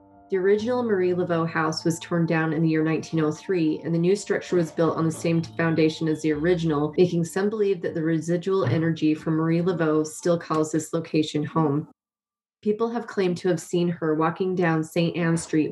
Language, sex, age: English, female, 30-49